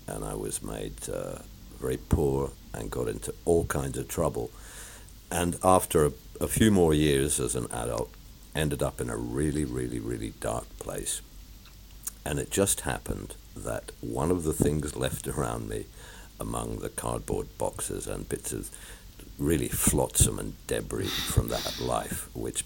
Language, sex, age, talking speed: English, male, 60-79, 160 wpm